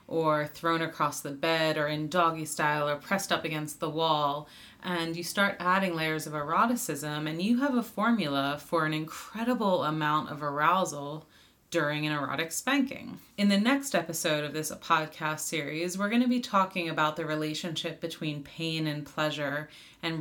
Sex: female